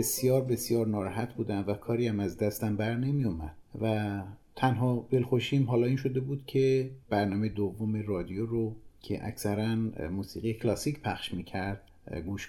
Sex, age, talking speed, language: male, 50-69, 150 wpm, Persian